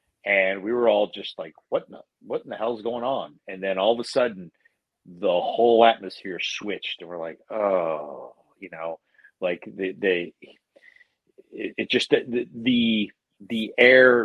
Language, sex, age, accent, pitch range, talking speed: English, male, 40-59, American, 100-135 Hz, 175 wpm